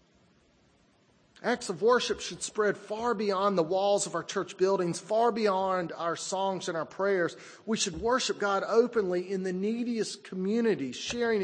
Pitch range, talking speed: 175-225 Hz, 155 wpm